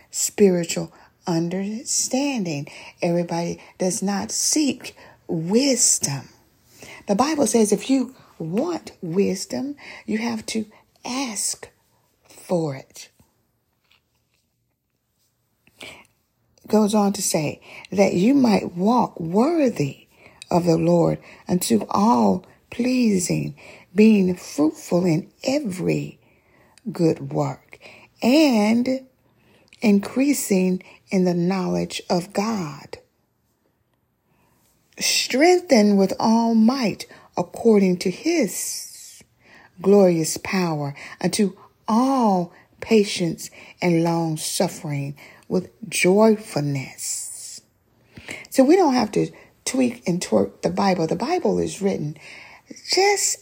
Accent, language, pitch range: American, English, 170-235 Hz